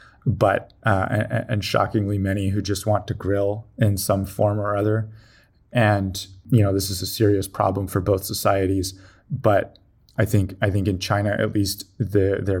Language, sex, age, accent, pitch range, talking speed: English, male, 20-39, American, 100-115 Hz, 170 wpm